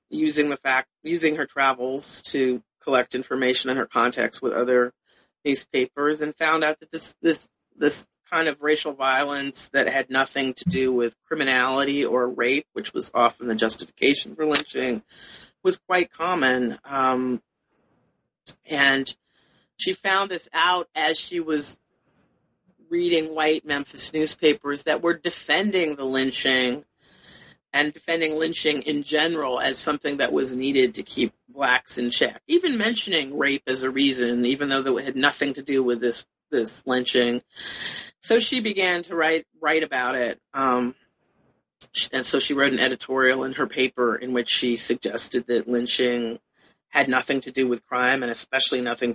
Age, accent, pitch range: 40-59, American, 125-155 Hz